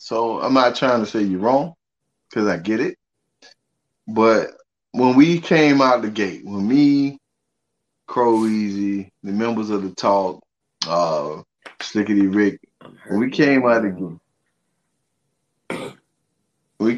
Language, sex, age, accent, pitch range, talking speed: English, male, 20-39, American, 100-125 Hz, 135 wpm